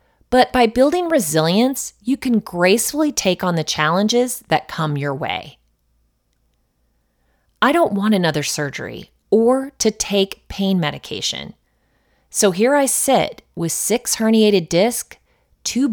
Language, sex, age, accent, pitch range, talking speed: English, female, 30-49, American, 170-250 Hz, 130 wpm